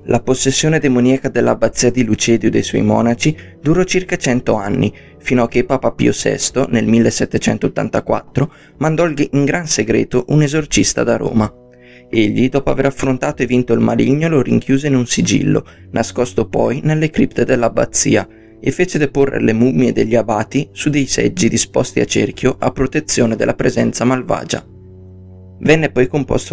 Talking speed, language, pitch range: 155 wpm, Italian, 115-135 Hz